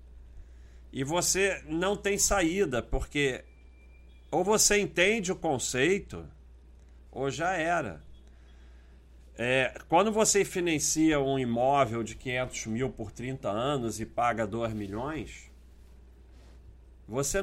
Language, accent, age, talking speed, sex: Portuguese, Brazilian, 40-59, 105 wpm, male